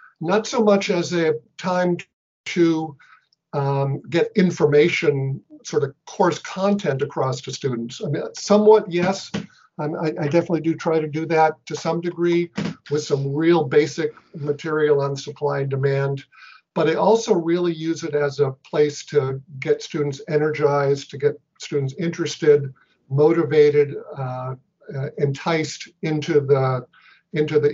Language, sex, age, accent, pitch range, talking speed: English, male, 50-69, American, 135-165 Hz, 145 wpm